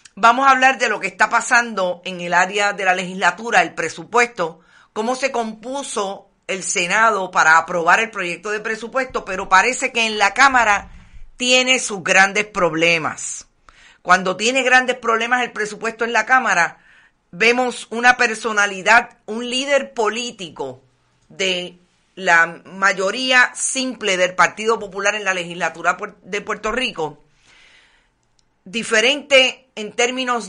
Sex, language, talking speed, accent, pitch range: female, Spanish, 135 wpm, American, 185-240 Hz